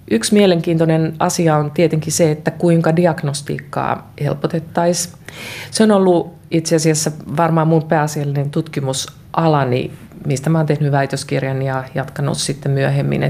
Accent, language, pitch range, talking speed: native, Finnish, 140-160 Hz, 115 wpm